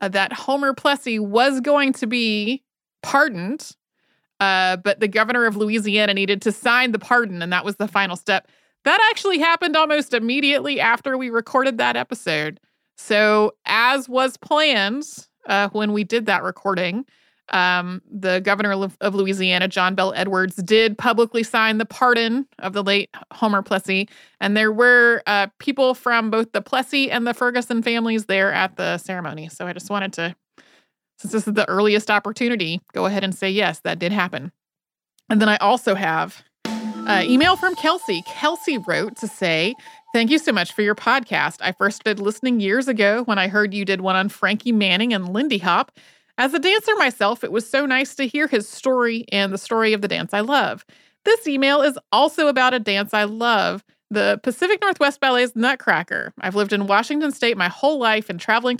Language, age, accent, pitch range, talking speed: English, 30-49, American, 195-255 Hz, 185 wpm